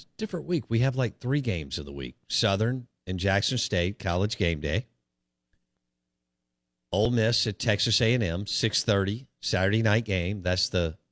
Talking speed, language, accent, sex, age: 150 wpm, English, American, male, 50-69